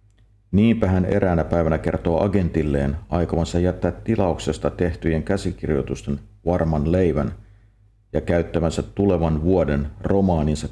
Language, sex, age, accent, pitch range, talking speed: Finnish, male, 50-69, native, 80-105 Hz, 100 wpm